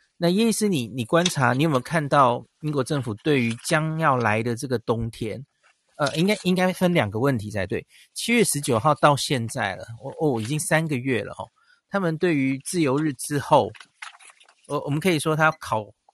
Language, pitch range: Chinese, 120-165 Hz